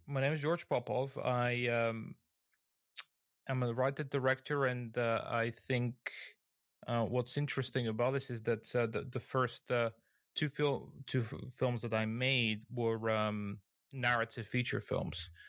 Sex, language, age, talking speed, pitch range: male, English, 20-39, 150 wpm, 110-125 Hz